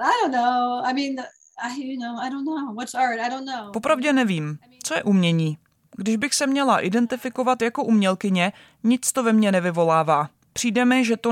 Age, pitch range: 20-39, 190-235 Hz